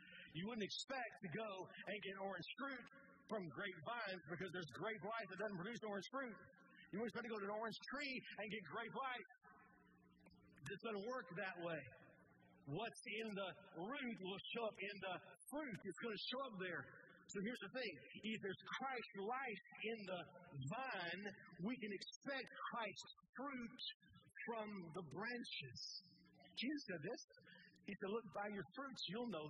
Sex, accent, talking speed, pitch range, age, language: male, American, 170 wpm, 155-220 Hz, 50-69, English